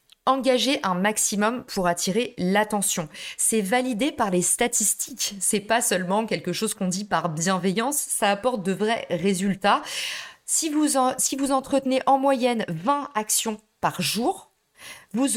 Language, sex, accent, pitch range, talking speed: French, female, French, 180-225 Hz, 150 wpm